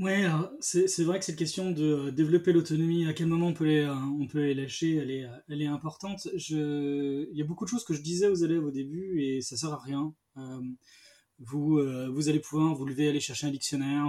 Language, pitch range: French, 135-165 Hz